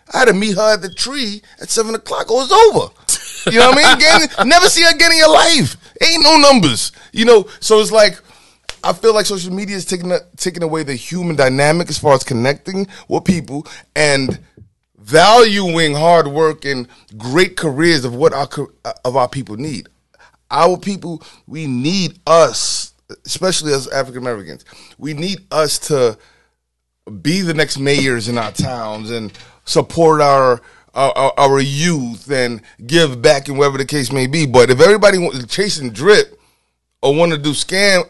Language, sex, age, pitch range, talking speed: English, male, 20-39, 140-195 Hz, 185 wpm